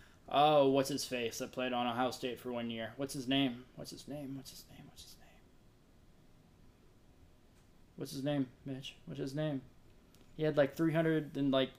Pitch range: 125-145 Hz